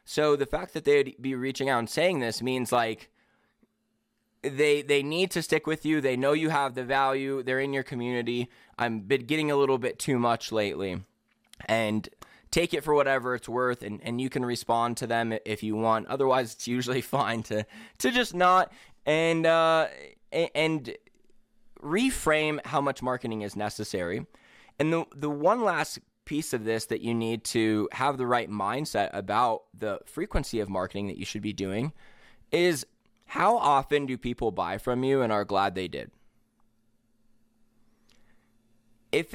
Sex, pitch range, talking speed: male, 115-145 Hz, 170 wpm